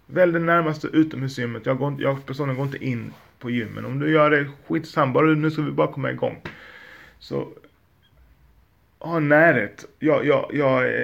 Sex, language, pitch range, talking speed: male, Swedish, 115-145 Hz, 170 wpm